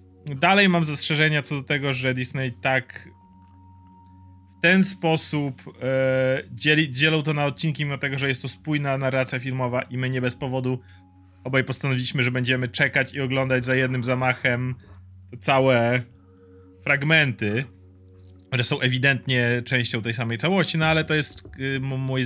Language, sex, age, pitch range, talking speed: Polish, male, 30-49, 95-135 Hz, 140 wpm